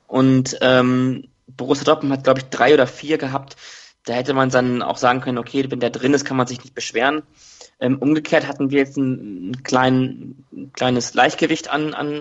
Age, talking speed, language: 20-39, 200 wpm, German